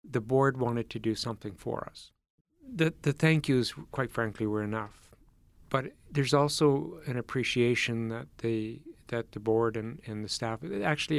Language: English